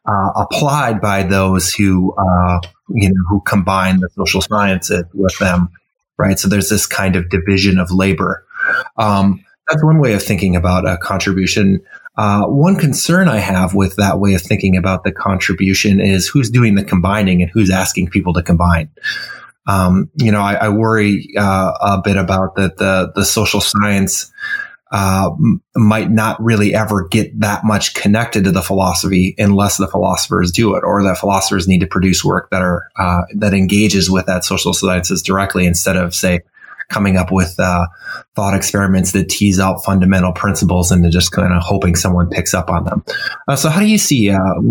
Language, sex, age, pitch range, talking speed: English, male, 20-39, 95-105 Hz, 185 wpm